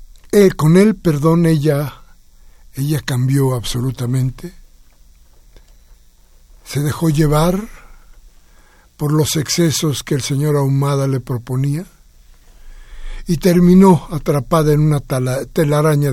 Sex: male